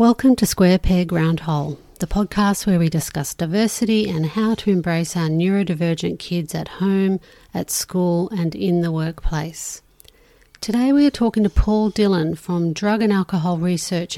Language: English